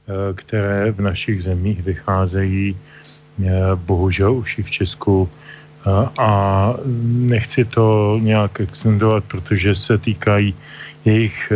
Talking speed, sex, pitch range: 100 wpm, male, 105-115 Hz